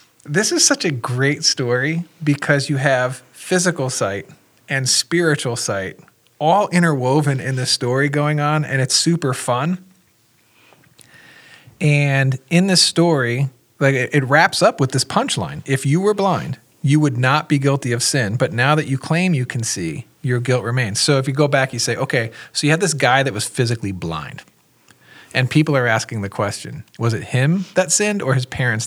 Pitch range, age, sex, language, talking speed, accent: 125-155 Hz, 40-59, male, English, 185 wpm, American